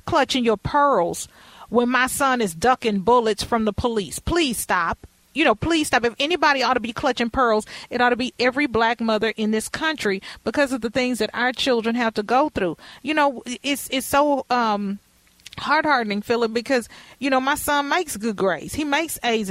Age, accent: 40-59, American